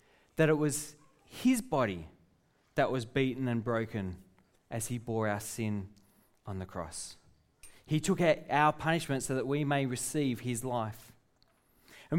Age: 20-39